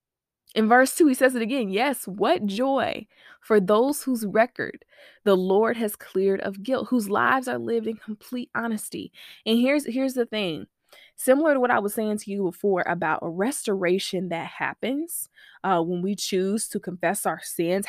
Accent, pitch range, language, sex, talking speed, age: American, 180-245 Hz, English, female, 180 wpm, 20-39